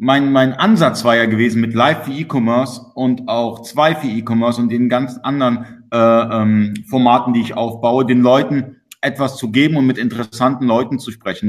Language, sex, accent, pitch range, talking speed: German, male, German, 120-145 Hz, 190 wpm